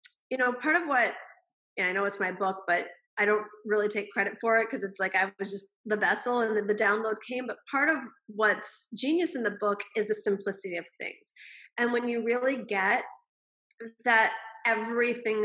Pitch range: 210-245 Hz